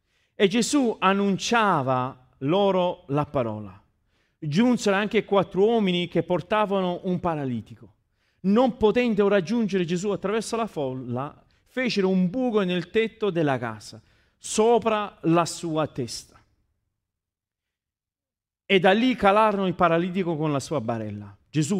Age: 40-59